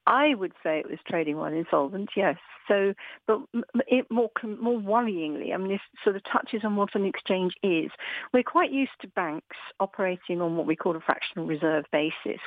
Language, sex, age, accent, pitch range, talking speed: English, female, 50-69, British, 185-260 Hz, 190 wpm